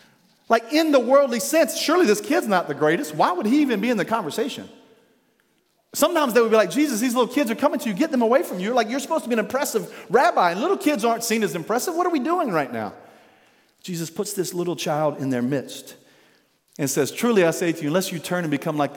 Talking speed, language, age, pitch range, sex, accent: 250 wpm, English, 40-59, 215-310 Hz, male, American